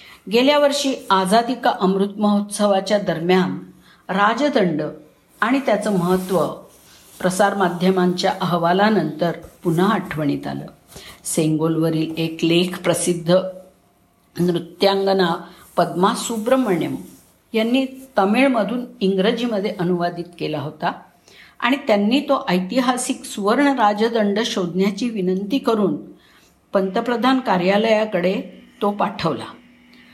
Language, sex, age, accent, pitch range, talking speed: Marathi, female, 50-69, native, 165-210 Hz, 85 wpm